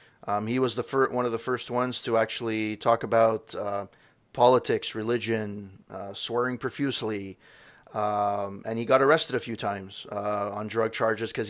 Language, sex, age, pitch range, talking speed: English, male, 30-49, 115-135 Hz, 170 wpm